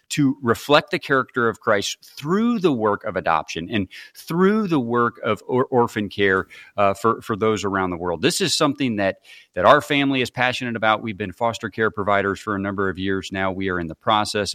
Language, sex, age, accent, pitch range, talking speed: English, male, 40-59, American, 100-130 Hz, 210 wpm